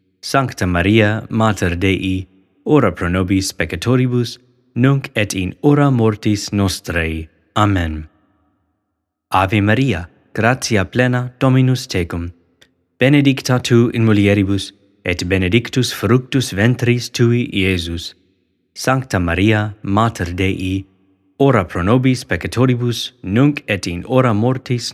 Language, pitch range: English, 90-125 Hz